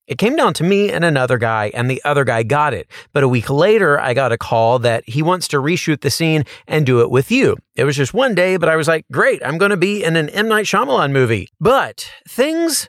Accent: American